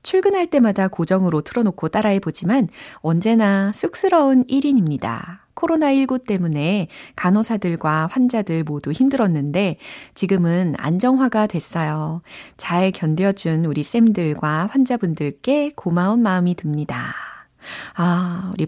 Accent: native